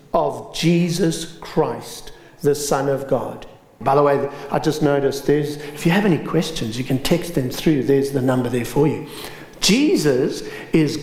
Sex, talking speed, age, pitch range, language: male, 175 wpm, 60-79, 145-220 Hz, English